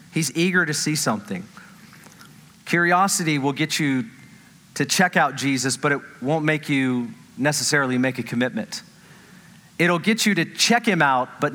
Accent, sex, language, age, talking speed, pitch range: American, male, English, 40-59, 155 wpm, 145-195 Hz